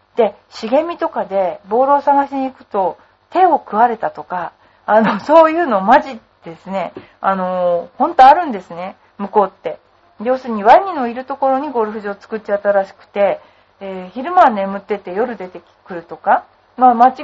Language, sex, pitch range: Japanese, female, 190-260 Hz